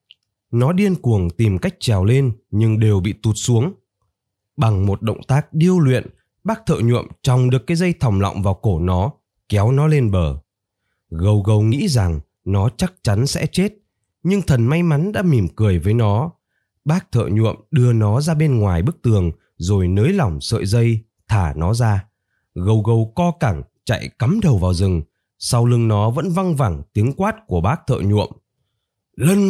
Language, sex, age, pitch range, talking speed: Vietnamese, male, 20-39, 100-145 Hz, 185 wpm